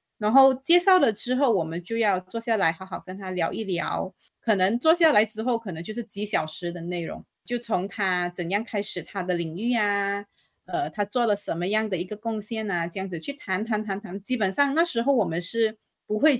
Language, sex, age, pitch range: Chinese, female, 30-49, 185-235 Hz